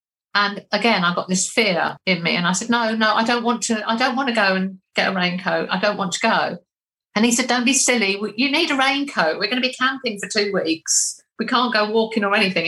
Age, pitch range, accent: 50-69, 190-240 Hz, British